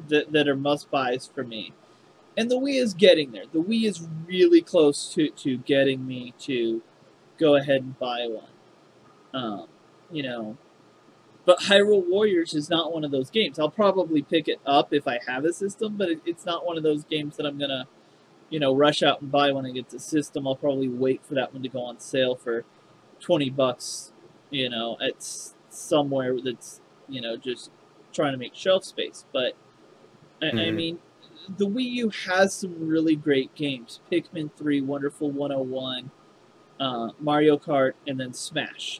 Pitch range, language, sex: 130-170 Hz, English, male